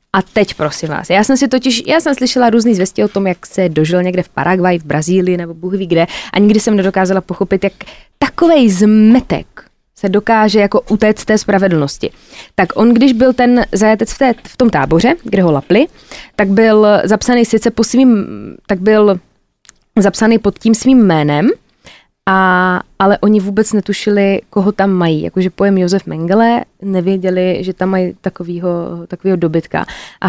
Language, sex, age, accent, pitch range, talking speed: Czech, female, 20-39, native, 180-215 Hz, 175 wpm